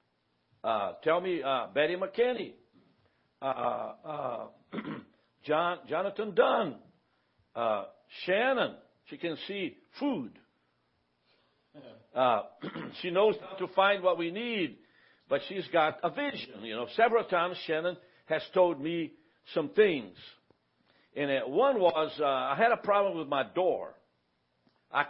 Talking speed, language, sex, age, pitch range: 125 wpm, English, male, 60-79, 140-200 Hz